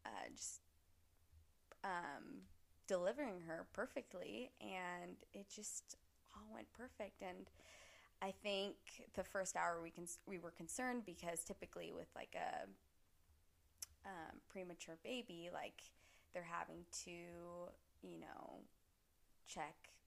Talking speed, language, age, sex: 115 wpm, English, 20-39, female